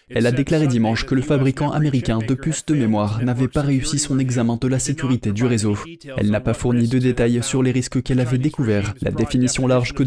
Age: 20-39